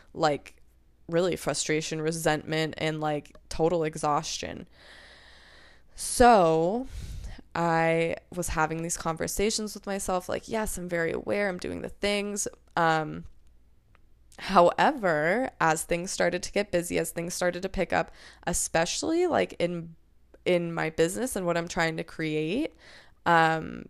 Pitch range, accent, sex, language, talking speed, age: 160-195 Hz, American, female, English, 130 wpm, 20-39